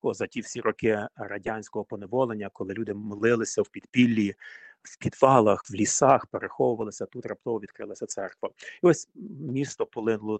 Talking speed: 140 wpm